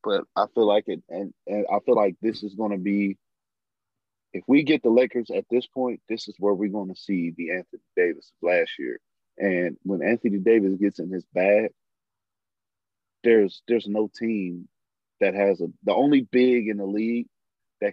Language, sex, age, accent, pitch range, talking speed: English, male, 30-49, American, 100-120 Hz, 185 wpm